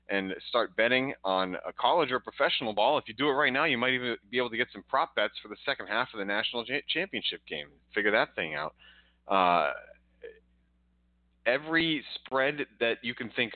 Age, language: 30-49, English